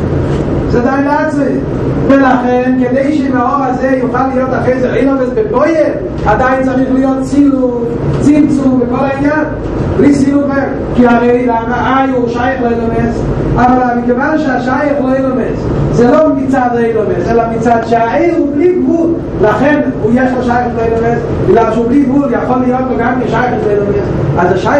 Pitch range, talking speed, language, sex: 215-275 Hz, 145 wpm, Hebrew, male